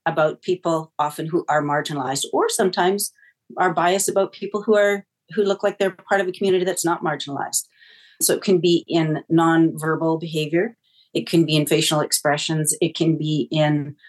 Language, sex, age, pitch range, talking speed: English, female, 40-59, 155-185 Hz, 180 wpm